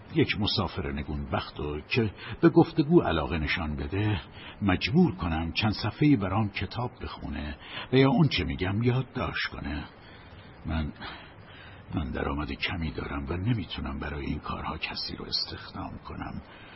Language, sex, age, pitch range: Persian, male, 60-79, 80-105 Hz